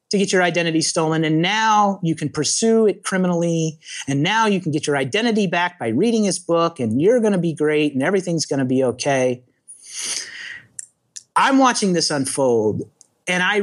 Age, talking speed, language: 30-49, 180 wpm, English